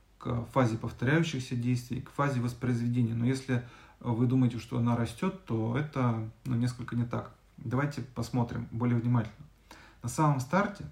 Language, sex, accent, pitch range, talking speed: Russian, male, native, 120-150 Hz, 150 wpm